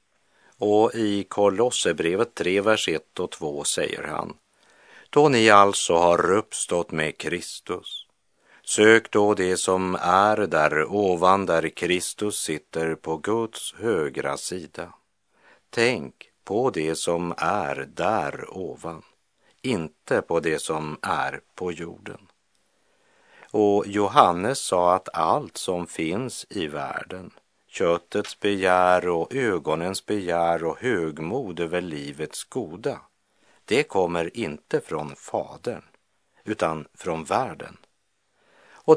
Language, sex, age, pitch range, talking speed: Swedish, male, 50-69, 80-100 Hz, 110 wpm